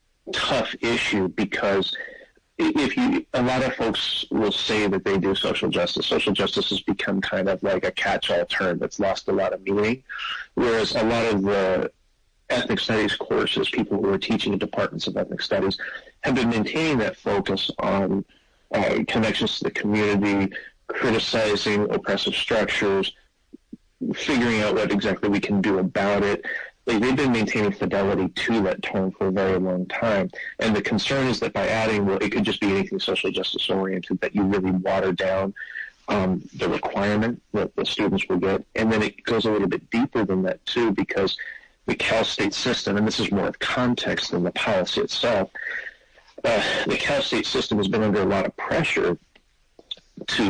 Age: 30-49